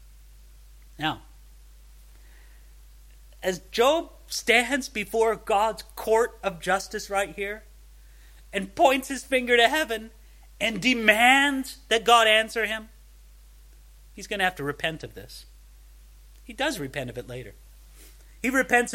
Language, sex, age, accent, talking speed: English, male, 40-59, American, 125 wpm